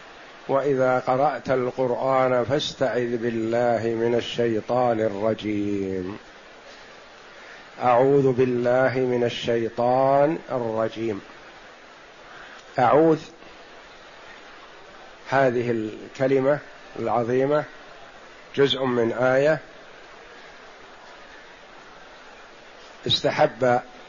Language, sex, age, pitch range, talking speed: Arabic, male, 50-69, 120-145 Hz, 50 wpm